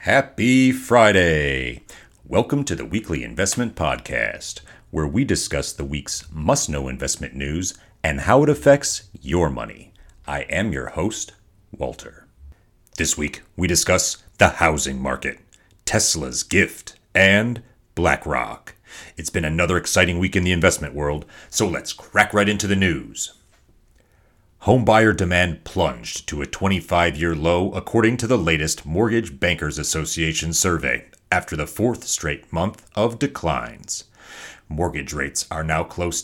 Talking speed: 135 wpm